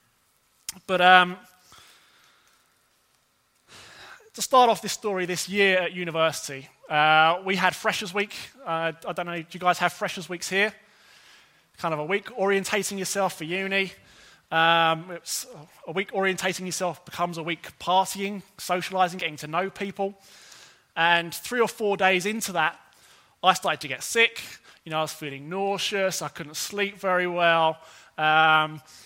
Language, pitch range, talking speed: English, 155-195 Hz, 150 wpm